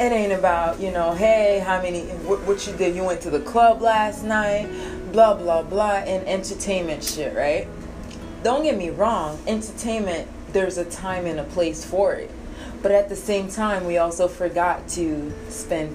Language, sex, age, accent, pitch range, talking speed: English, female, 20-39, American, 140-210 Hz, 185 wpm